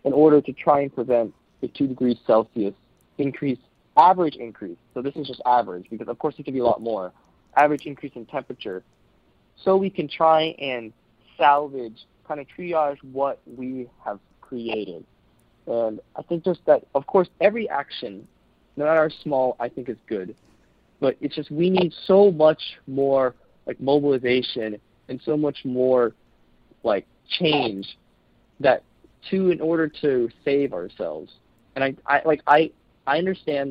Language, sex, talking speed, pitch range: English, male, 160 wpm, 115-155 Hz